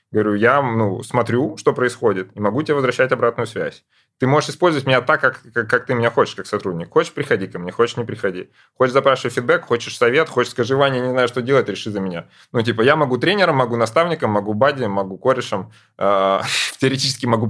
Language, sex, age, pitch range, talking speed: Russian, male, 20-39, 105-135 Hz, 205 wpm